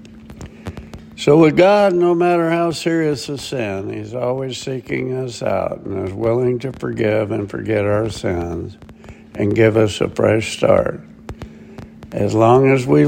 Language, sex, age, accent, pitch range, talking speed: English, male, 60-79, American, 105-130 Hz, 150 wpm